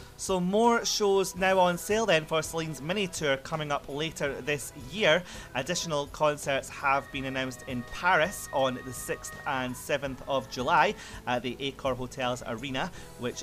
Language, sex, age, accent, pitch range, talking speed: English, male, 30-49, British, 125-160 Hz, 160 wpm